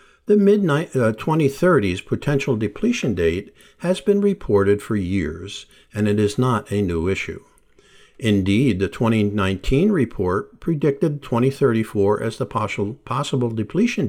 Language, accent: English, American